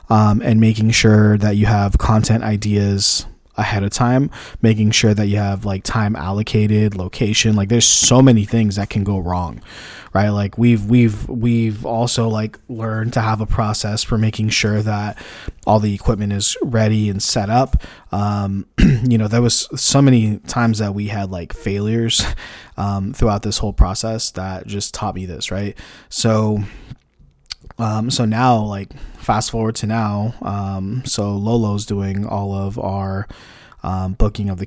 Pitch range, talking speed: 100-115 Hz, 170 wpm